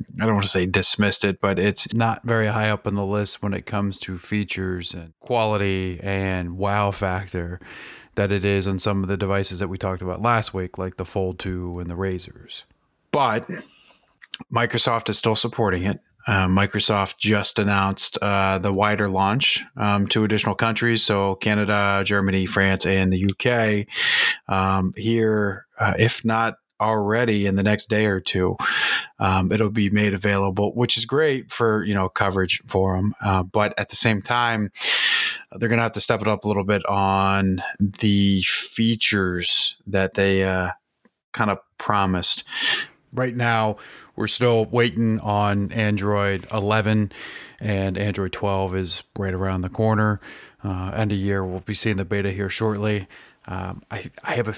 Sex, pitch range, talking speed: male, 95-110 Hz, 170 wpm